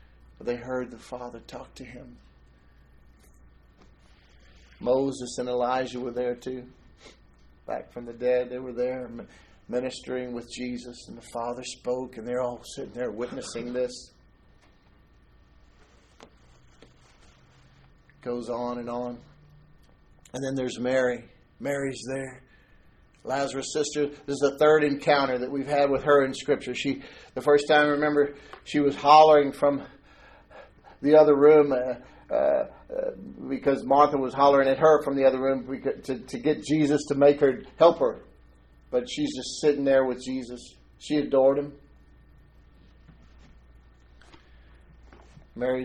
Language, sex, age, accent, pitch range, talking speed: English, male, 50-69, American, 115-140 Hz, 135 wpm